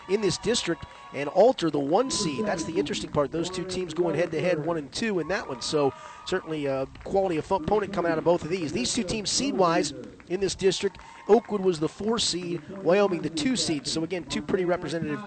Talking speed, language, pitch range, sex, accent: 230 wpm, English, 130-180 Hz, male, American